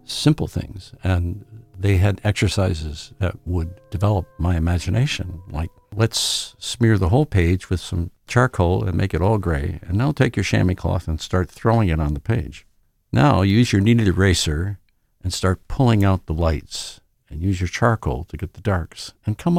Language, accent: English, American